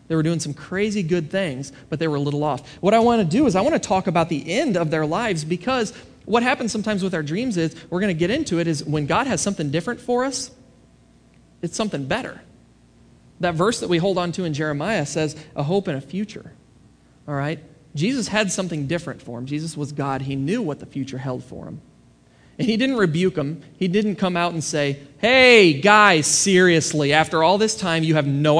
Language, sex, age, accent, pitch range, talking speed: English, male, 30-49, American, 145-190 Hz, 230 wpm